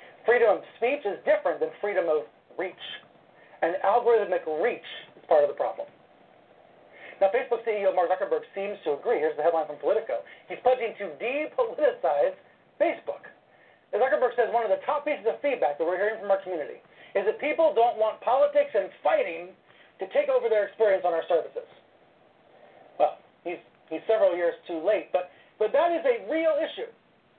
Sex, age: male, 40-59